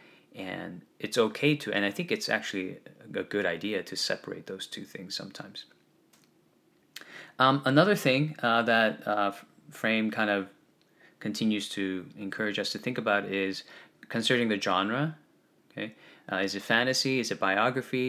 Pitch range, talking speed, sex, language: 95-120 Hz, 155 wpm, male, English